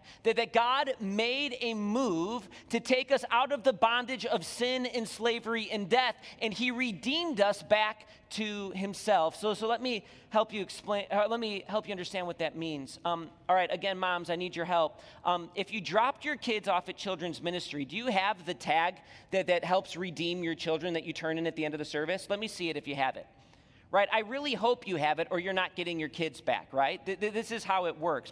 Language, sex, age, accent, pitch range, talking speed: English, male, 30-49, American, 165-220 Hz, 230 wpm